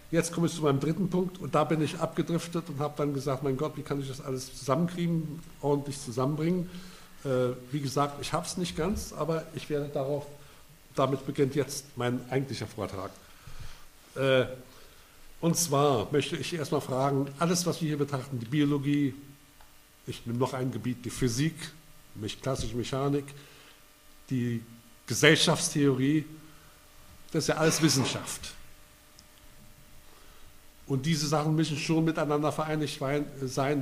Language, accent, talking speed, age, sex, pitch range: German, German, 145 wpm, 60-79, male, 130-150 Hz